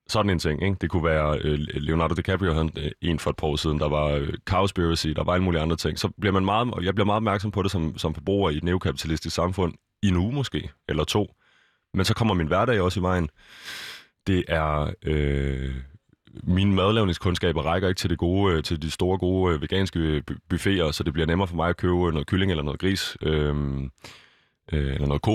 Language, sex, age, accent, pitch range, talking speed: Danish, male, 30-49, native, 80-100 Hz, 220 wpm